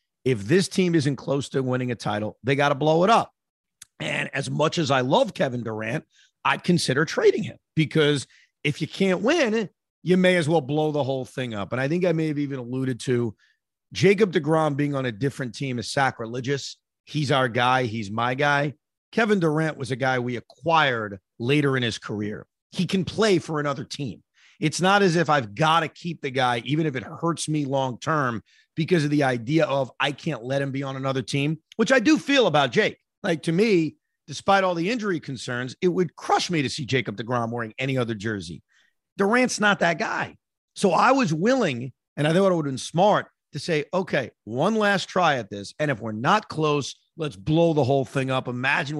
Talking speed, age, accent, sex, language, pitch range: 215 wpm, 40-59, American, male, English, 130-185 Hz